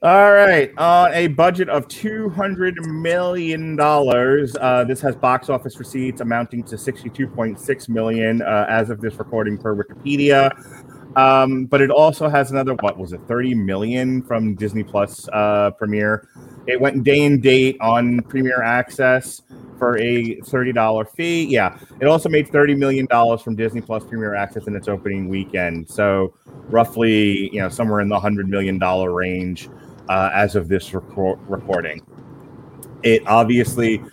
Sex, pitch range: male, 110-140 Hz